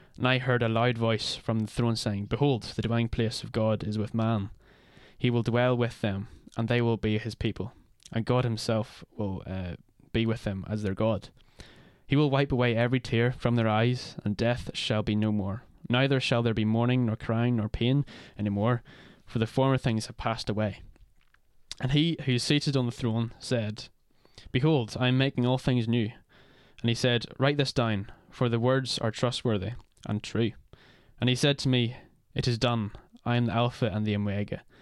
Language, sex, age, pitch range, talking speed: English, male, 10-29, 110-125 Hz, 205 wpm